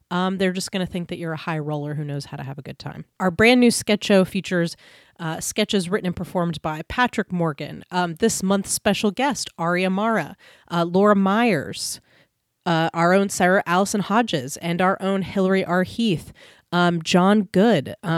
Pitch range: 165-205 Hz